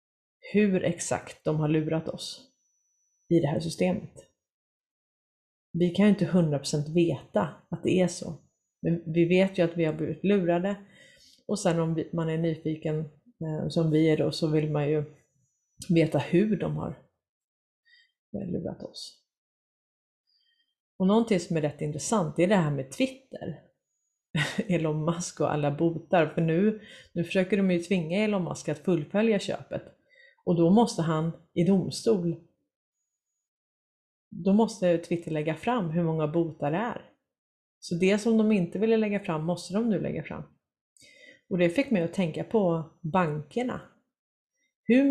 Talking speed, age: 155 wpm, 30-49